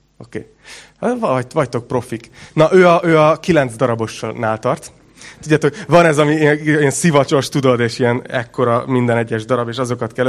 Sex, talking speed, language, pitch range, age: male, 160 wpm, Hungarian, 125-160 Hz, 30-49